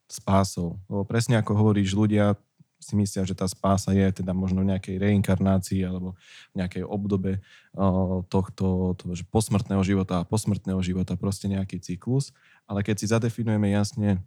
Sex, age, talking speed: male, 20-39, 150 wpm